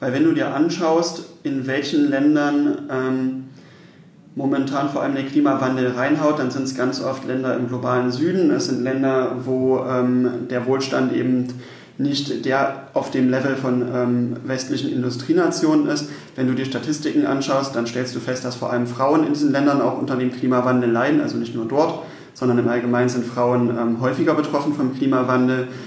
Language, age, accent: German, 30-49, German